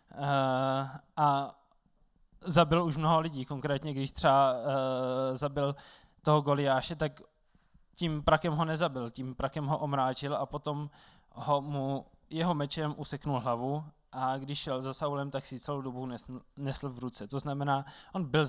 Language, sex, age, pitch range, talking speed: Czech, male, 20-39, 130-155 Hz, 145 wpm